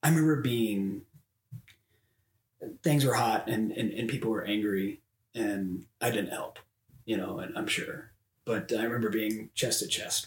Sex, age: male, 30-49